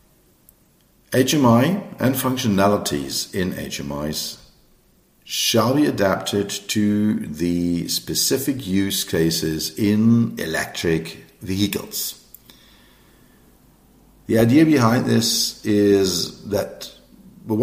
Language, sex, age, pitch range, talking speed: English, male, 50-69, 85-130 Hz, 75 wpm